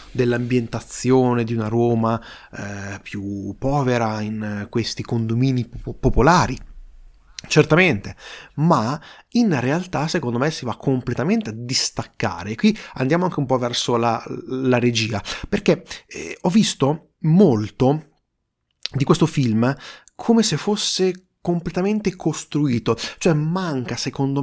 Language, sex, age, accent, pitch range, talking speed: Italian, male, 30-49, native, 120-165 Hz, 120 wpm